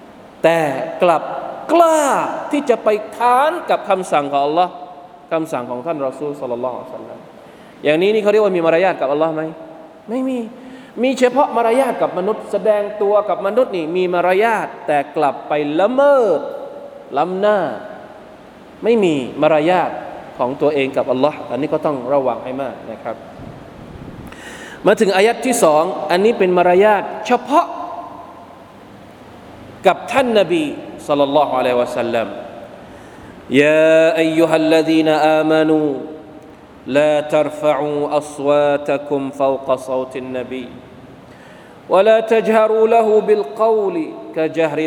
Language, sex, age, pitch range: Thai, male, 20-39, 135-215 Hz